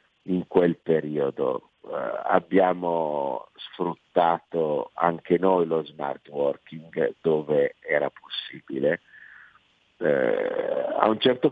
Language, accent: Italian, native